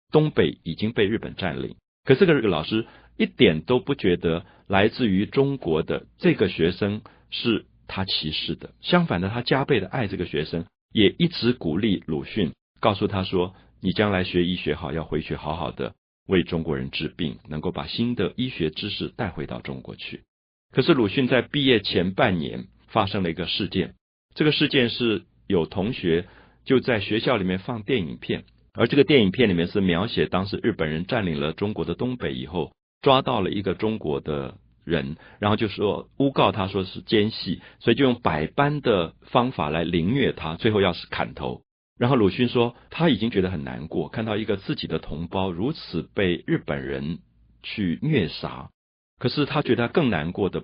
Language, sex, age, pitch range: Chinese, male, 50-69, 80-120 Hz